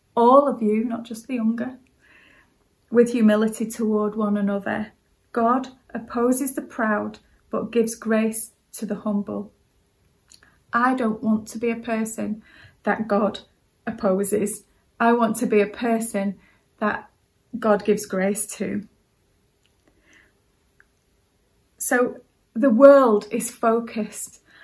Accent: British